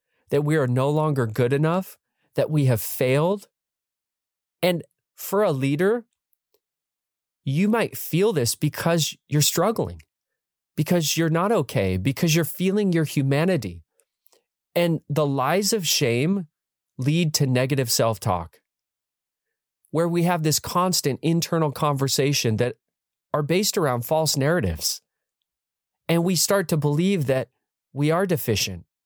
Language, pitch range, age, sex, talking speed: English, 125-170 Hz, 30-49, male, 130 wpm